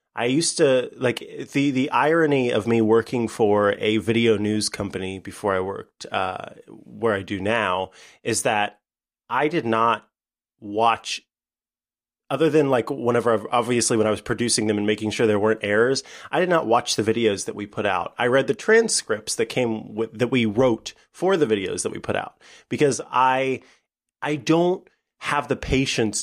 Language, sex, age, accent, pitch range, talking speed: English, male, 30-49, American, 110-140 Hz, 185 wpm